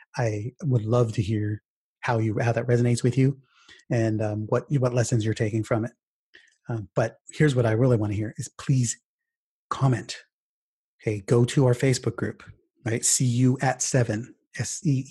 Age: 30-49